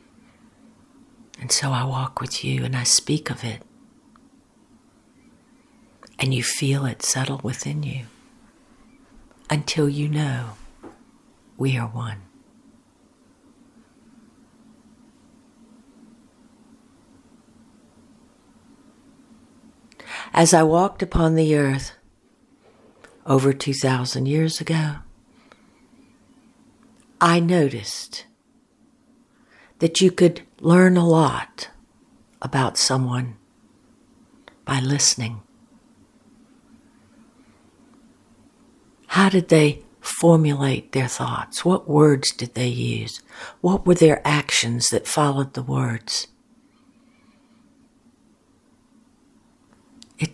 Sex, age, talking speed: female, 60-79, 80 wpm